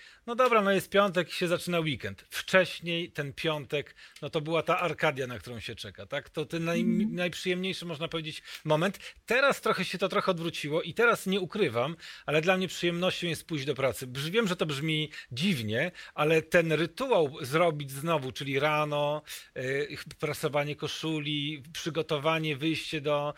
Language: Polish